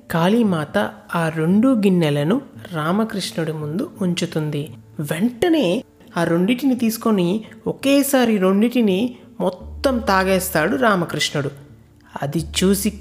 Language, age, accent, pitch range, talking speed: Telugu, 30-49, native, 145-195 Hz, 85 wpm